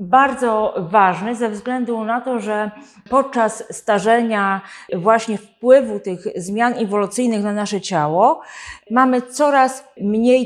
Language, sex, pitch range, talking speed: Polish, female, 205-250 Hz, 115 wpm